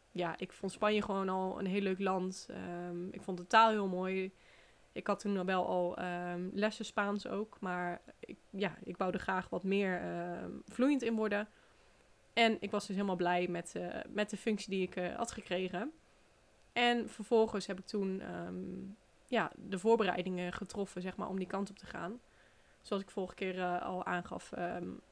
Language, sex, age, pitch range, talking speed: Dutch, female, 20-39, 185-215 Hz, 175 wpm